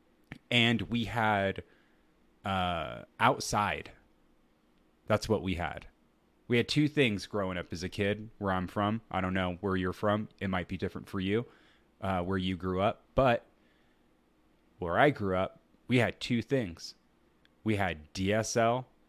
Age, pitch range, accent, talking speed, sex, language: 30-49, 95-140 Hz, American, 155 wpm, male, English